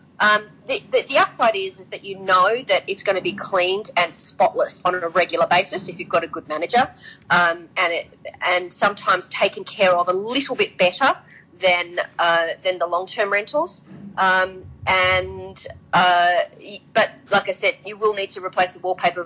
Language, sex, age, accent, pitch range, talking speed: English, female, 30-49, Australian, 170-205 Hz, 190 wpm